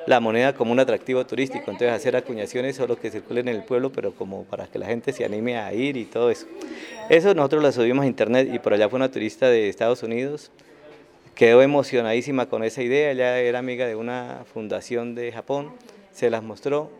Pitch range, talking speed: 115-135 Hz, 210 wpm